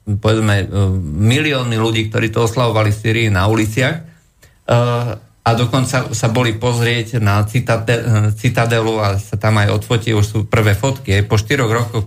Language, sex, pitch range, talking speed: Slovak, male, 110-130 Hz, 155 wpm